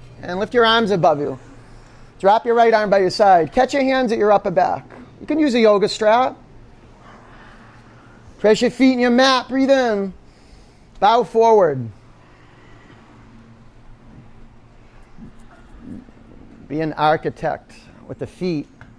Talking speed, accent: 135 wpm, American